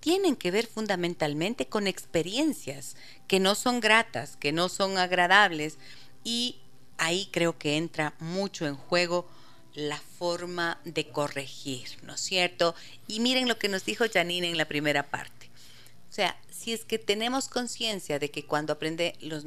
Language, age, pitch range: Spanish, 40-59, 150-195 Hz